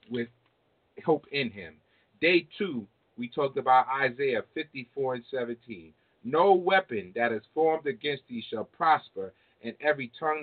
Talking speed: 145 wpm